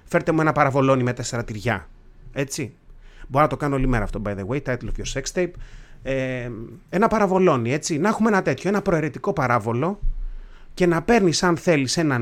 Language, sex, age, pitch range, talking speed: Greek, male, 30-49, 125-180 Hz, 195 wpm